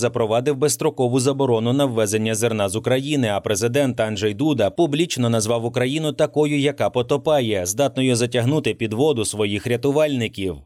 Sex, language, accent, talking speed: male, Ukrainian, native, 135 wpm